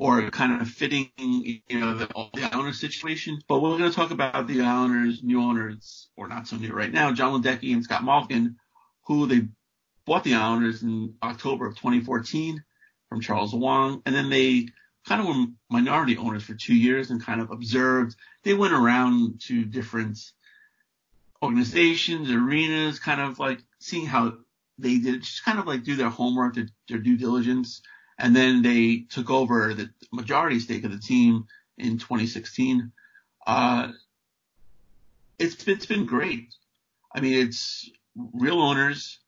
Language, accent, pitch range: English, American, 115-145 Hz